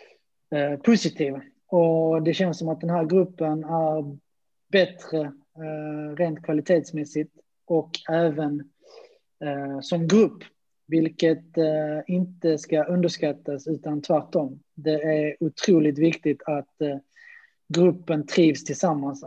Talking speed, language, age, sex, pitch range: 95 wpm, Swedish, 20-39, male, 150-175 Hz